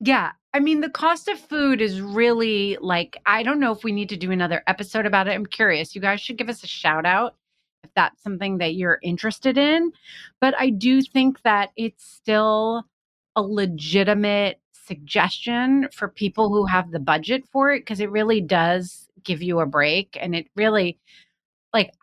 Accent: American